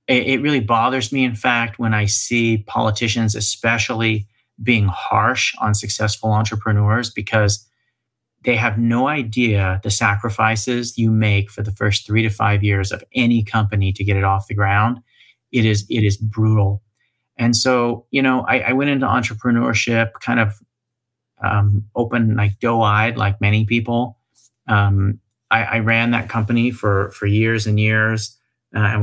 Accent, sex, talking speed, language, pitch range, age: American, male, 160 wpm, English, 105-120 Hz, 30-49